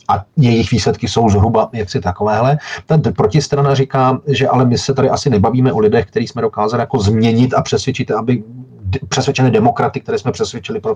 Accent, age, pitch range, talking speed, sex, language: native, 40-59, 110-140 Hz, 185 wpm, male, Czech